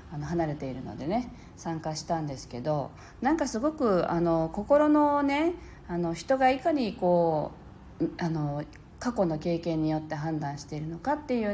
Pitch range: 155-260 Hz